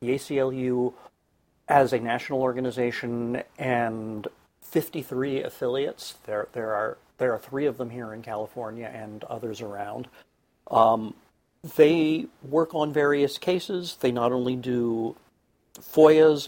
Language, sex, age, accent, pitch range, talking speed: English, male, 50-69, American, 115-140 Hz, 125 wpm